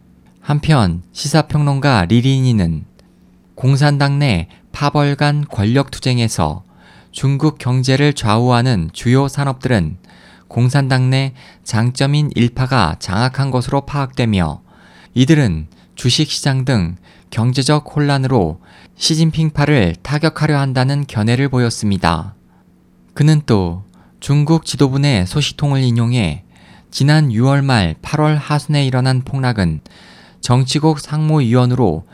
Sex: male